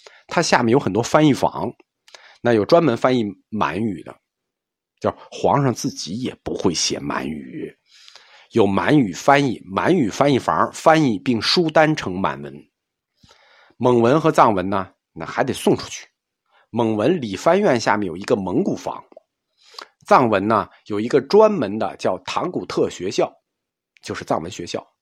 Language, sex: Chinese, male